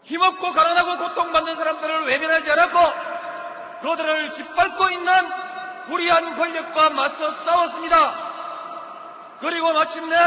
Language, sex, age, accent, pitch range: Korean, male, 40-59, native, 300-360 Hz